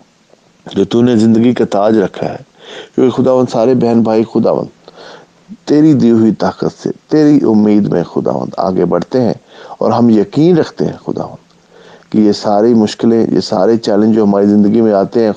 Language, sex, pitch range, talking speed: English, male, 100-125 Hz, 170 wpm